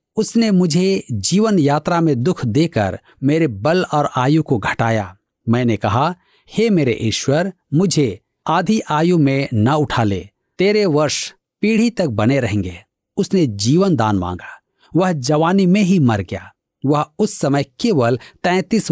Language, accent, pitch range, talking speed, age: Hindi, native, 120-180 Hz, 145 wpm, 50-69